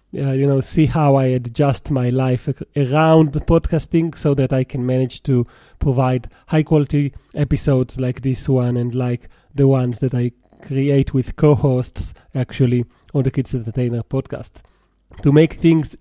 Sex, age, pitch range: male, 30-49, 130-150 Hz